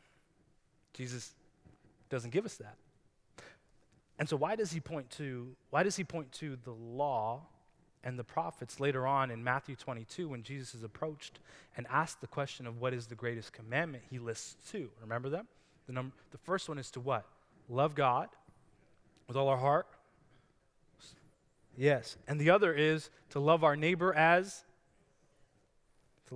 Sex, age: male, 20-39